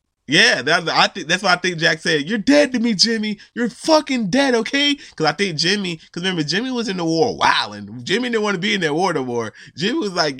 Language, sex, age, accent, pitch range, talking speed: English, male, 20-39, American, 120-170 Hz, 240 wpm